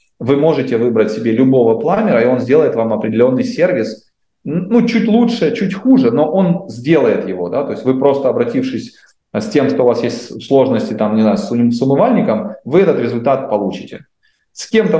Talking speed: 180 wpm